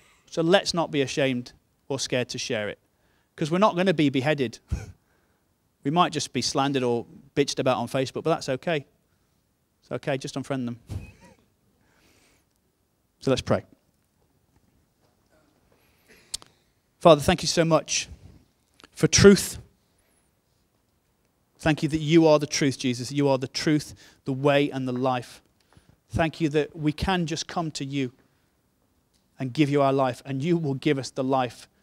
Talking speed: 155 wpm